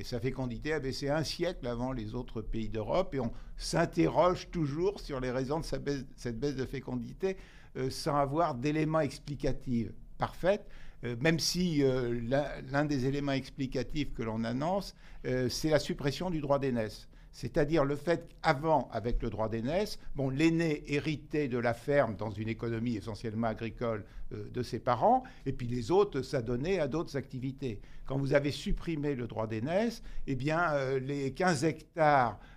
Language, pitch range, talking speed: French, 125-155 Hz, 175 wpm